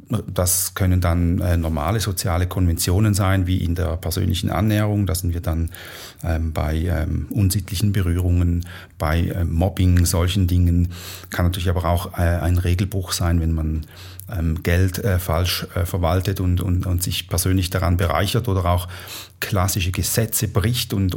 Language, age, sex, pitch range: German, 40-59, male, 90-105 Hz